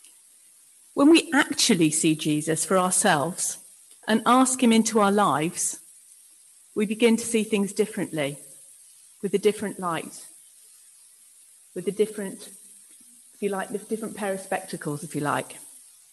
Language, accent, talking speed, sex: English, British, 135 wpm, female